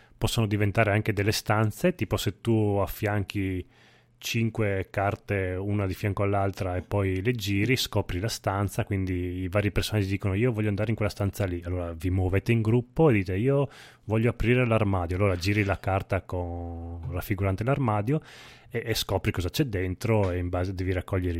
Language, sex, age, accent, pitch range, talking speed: Italian, male, 20-39, native, 95-110 Hz, 175 wpm